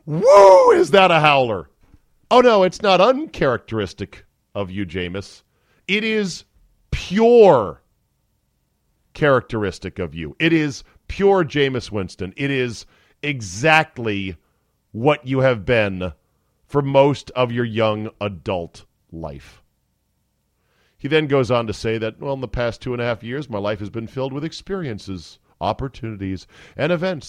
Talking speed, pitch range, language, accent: 140 wpm, 100-155 Hz, English, American